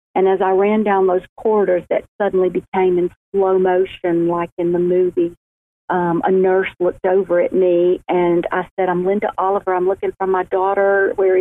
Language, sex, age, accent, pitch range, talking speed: English, female, 50-69, American, 185-220 Hz, 190 wpm